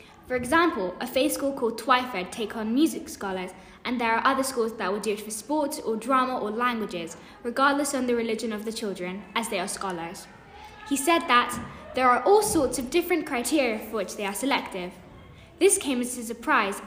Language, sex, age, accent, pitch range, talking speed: English, female, 10-29, British, 210-265 Hz, 205 wpm